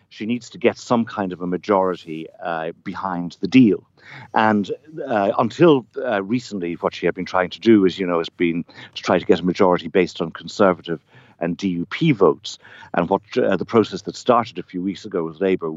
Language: English